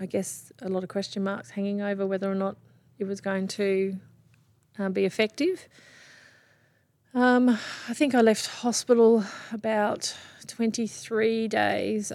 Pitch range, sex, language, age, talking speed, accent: 170-200 Hz, female, English, 30-49, 140 wpm, Australian